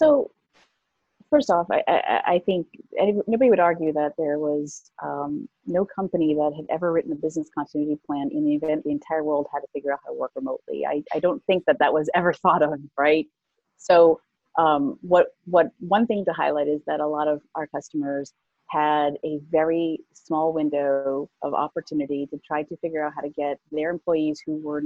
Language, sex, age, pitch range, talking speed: English, female, 30-49, 150-175 Hz, 200 wpm